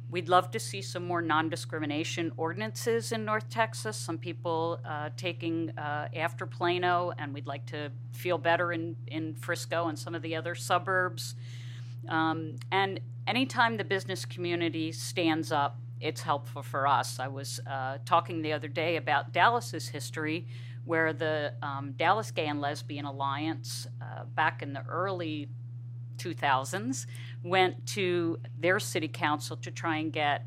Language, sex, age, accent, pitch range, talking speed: English, female, 50-69, American, 120-155 Hz, 155 wpm